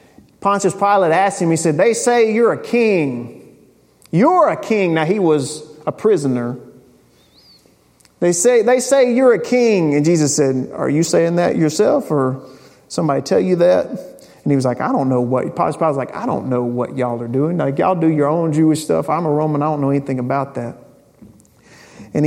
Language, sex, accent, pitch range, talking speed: English, male, American, 130-195 Hz, 200 wpm